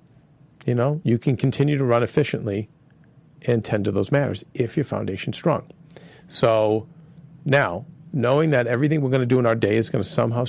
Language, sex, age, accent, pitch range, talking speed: English, male, 50-69, American, 110-150 Hz, 175 wpm